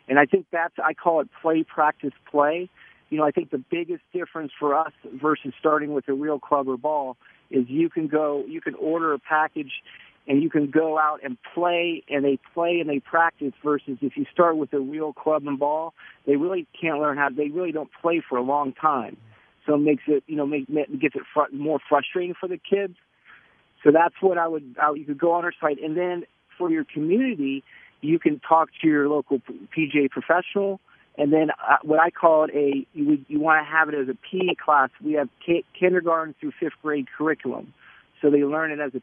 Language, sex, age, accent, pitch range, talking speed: English, male, 50-69, American, 145-165 Hz, 215 wpm